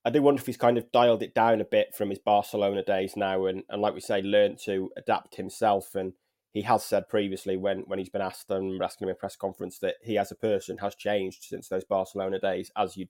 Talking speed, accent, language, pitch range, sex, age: 255 wpm, British, English, 95-105 Hz, male, 20-39